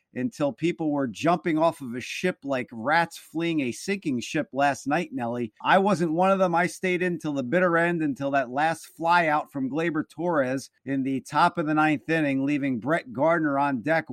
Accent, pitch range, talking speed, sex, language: American, 150-210 Hz, 210 wpm, male, English